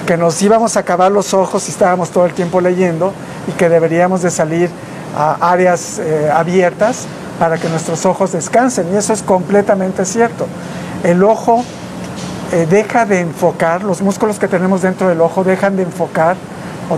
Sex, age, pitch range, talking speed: male, 50-69, 170-190 Hz, 175 wpm